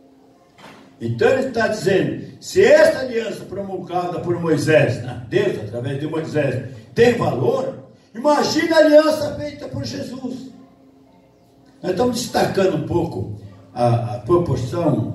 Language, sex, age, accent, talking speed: Portuguese, male, 60-79, Brazilian, 125 wpm